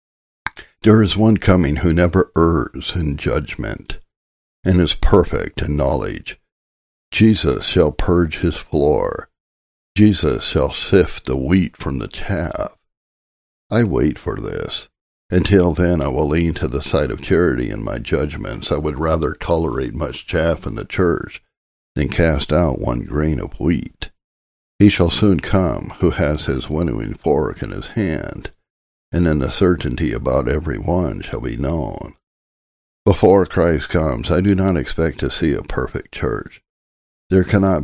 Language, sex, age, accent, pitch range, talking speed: English, male, 60-79, American, 70-90 Hz, 150 wpm